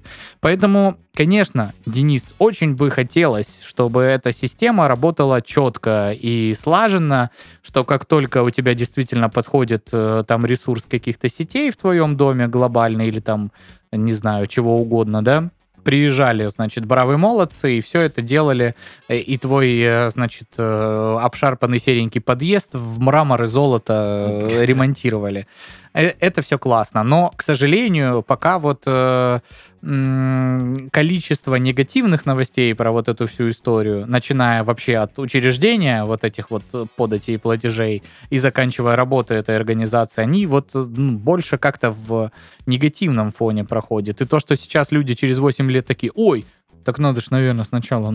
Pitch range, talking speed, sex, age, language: 115-140 Hz, 135 wpm, male, 20-39, Russian